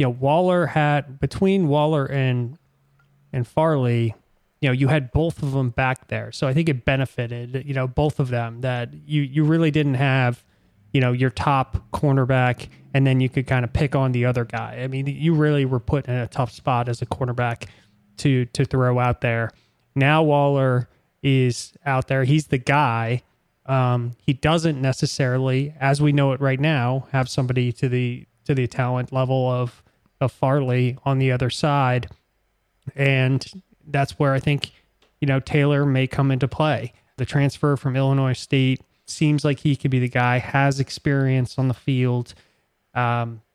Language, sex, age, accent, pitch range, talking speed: English, male, 20-39, American, 125-140 Hz, 180 wpm